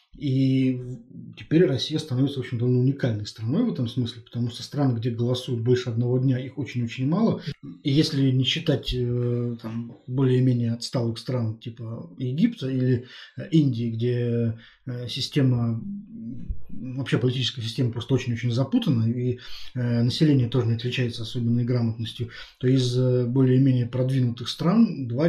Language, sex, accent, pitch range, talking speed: Russian, male, native, 120-135 Hz, 130 wpm